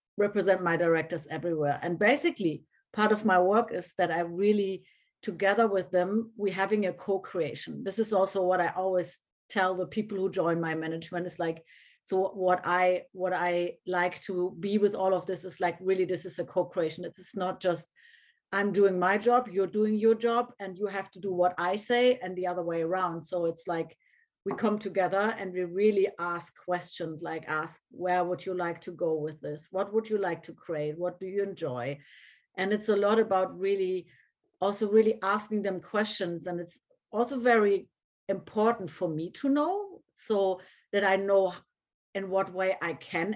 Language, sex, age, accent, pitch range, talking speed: English, female, 30-49, German, 175-210 Hz, 195 wpm